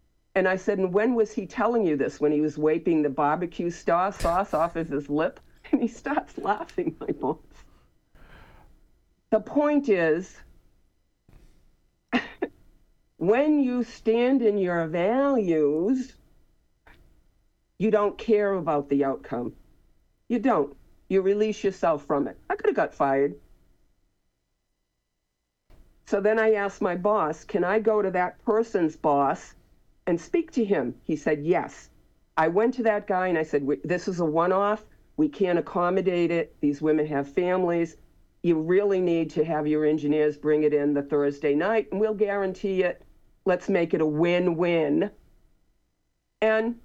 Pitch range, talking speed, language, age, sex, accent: 155-230 Hz, 150 wpm, English, 50-69, female, American